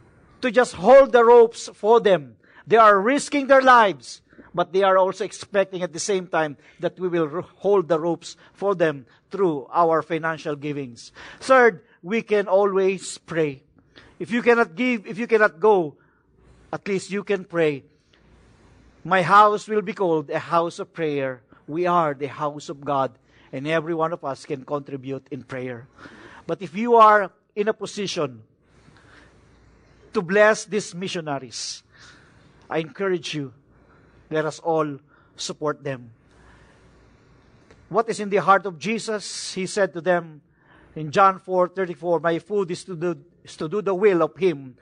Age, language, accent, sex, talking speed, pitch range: 50-69, English, Filipino, male, 160 wpm, 150-205 Hz